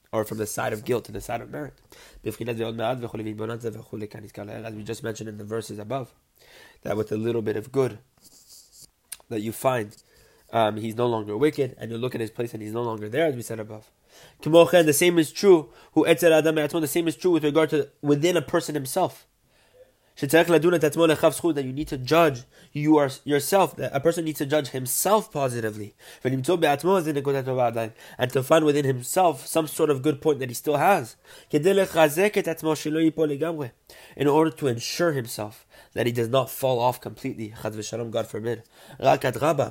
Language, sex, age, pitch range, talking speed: English, male, 20-39, 115-155 Hz, 165 wpm